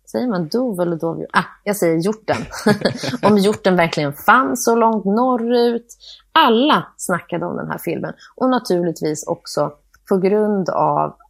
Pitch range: 160-205 Hz